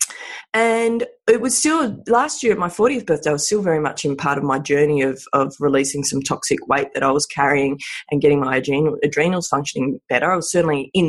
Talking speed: 215 wpm